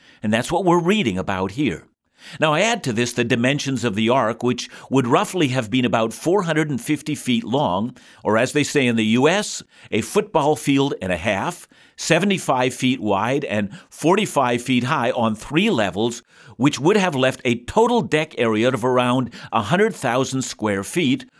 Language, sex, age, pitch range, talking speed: English, male, 50-69, 120-160 Hz, 175 wpm